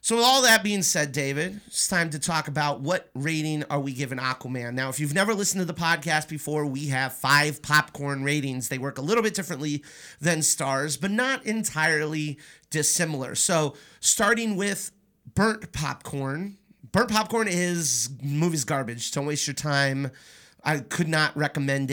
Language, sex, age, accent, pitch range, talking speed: English, male, 30-49, American, 135-185 Hz, 170 wpm